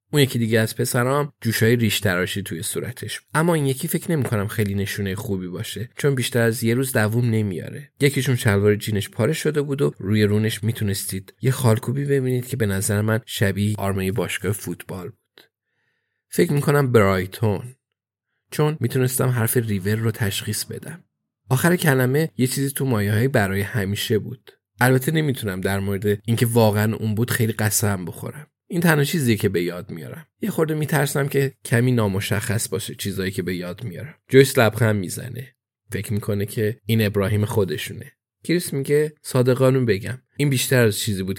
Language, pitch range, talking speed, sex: Persian, 105-130 Hz, 170 wpm, male